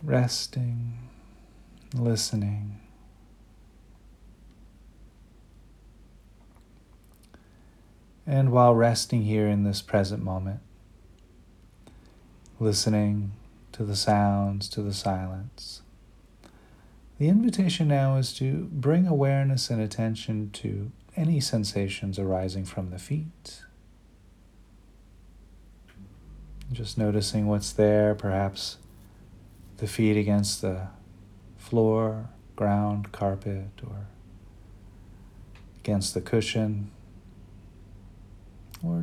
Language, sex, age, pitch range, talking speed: English, male, 40-59, 95-115 Hz, 75 wpm